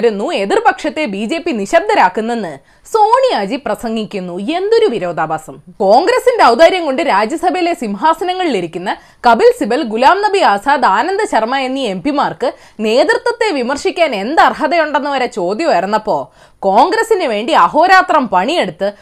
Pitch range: 225-355 Hz